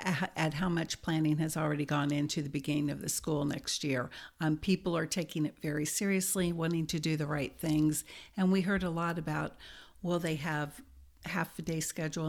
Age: 60-79